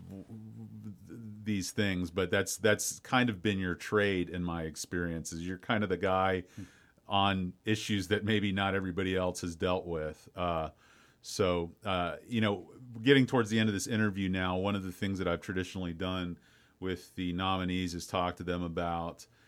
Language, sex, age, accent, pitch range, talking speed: English, male, 40-59, American, 90-105 Hz, 175 wpm